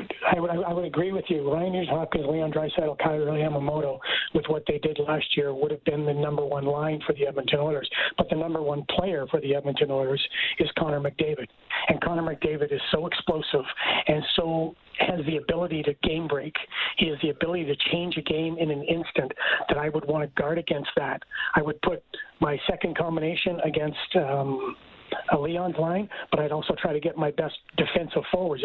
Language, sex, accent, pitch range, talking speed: English, male, American, 150-170 Hz, 200 wpm